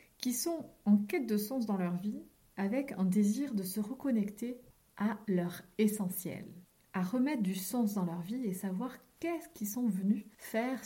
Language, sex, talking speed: French, female, 175 wpm